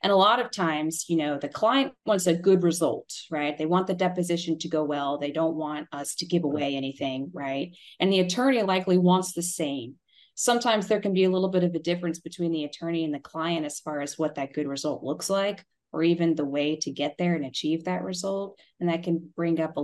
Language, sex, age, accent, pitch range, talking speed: English, female, 20-39, American, 150-180 Hz, 240 wpm